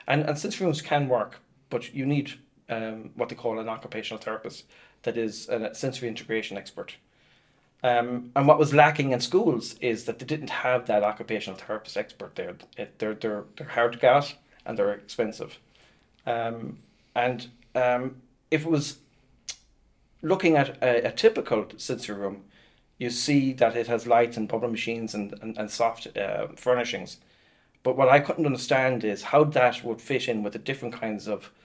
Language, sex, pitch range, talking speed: English, male, 115-140 Hz, 175 wpm